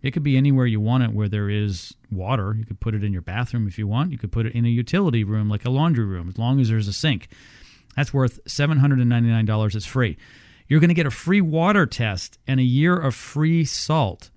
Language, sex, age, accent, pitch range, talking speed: English, male, 40-59, American, 110-135 Hz, 240 wpm